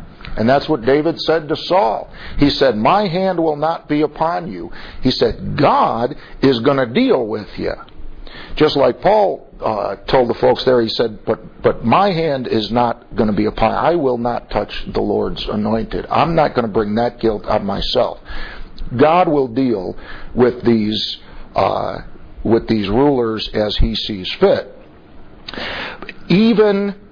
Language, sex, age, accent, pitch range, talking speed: English, male, 50-69, American, 115-155 Hz, 170 wpm